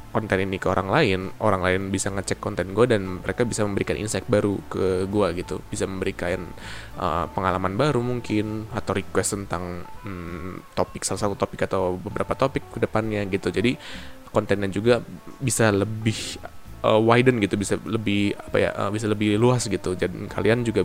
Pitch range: 95-115 Hz